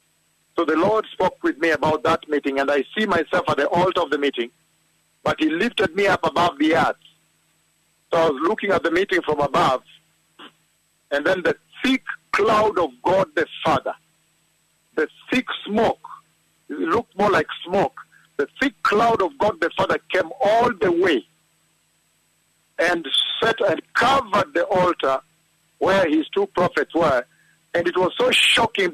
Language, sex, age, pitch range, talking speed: English, male, 50-69, 170-245 Hz, 165 wpm